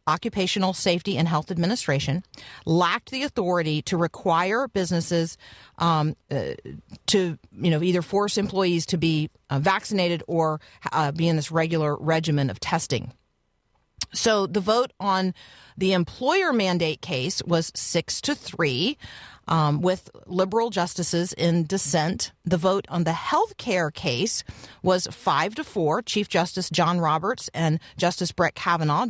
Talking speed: 140 wpm